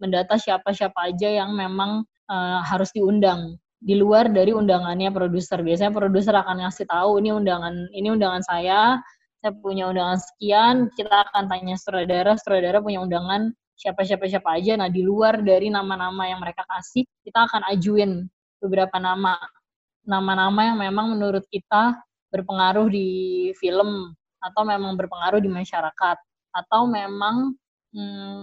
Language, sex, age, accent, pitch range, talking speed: Indonesian, female, 20-39, native, 185-220 Hz, 135 wpm